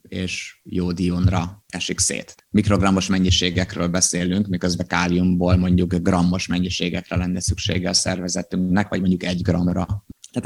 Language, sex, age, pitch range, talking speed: Hungarian, male, 30-49, 90-100 Hz, 120 wpm